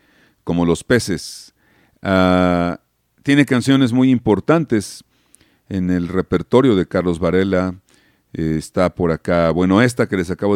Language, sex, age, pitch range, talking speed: Spanish, male, 50-69, 85-115 Hz, 125 wpm